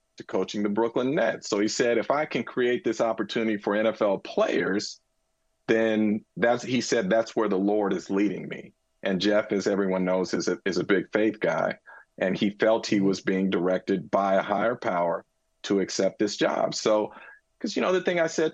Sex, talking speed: male, 205 wpm